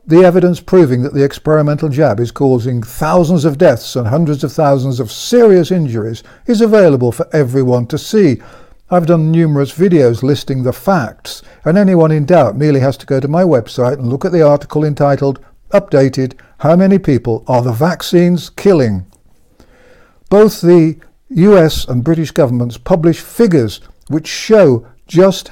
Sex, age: male, 60-79